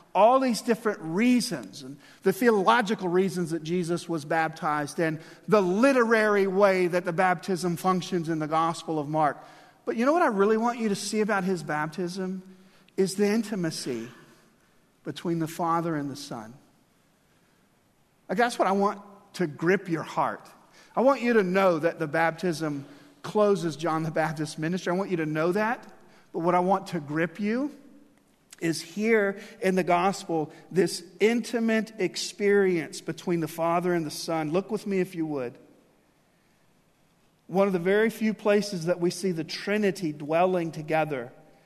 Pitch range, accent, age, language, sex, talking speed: 165-205 Hz, American, 50-69, English, male, 165 wpm